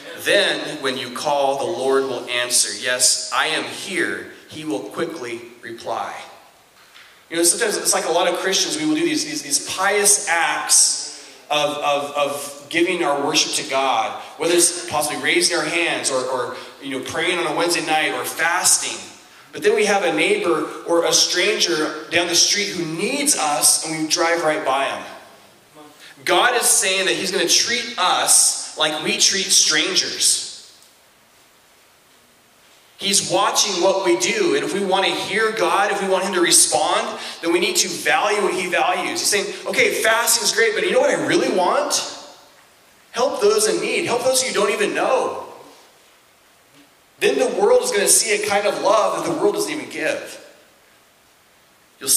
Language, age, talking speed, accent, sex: English, 30-49, 180 wpm, American, male